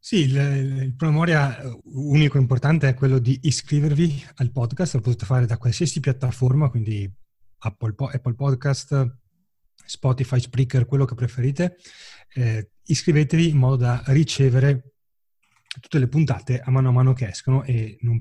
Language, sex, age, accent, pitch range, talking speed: Italian, male, 30-49, native, 115-140 Hz, 150 wpm